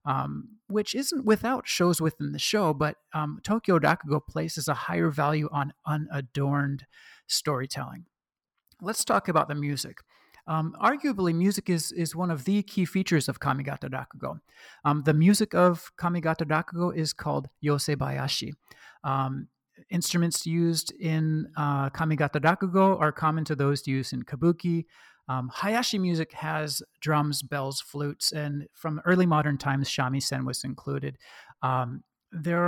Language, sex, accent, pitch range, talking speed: English, male, American, 145-185 Hz, 140 wpm